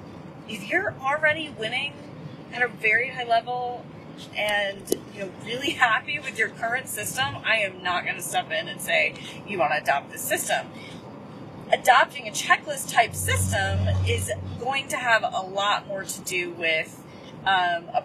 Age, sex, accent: 30-49, female, American